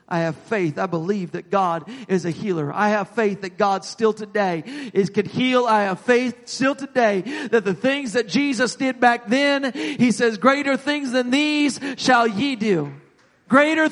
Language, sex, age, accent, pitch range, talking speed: English, male, 40-59, American, 165-255 Hz, 185 wpm